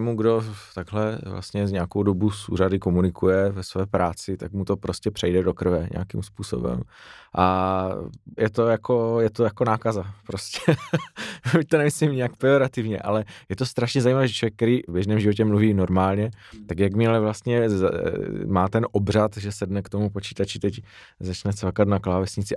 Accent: native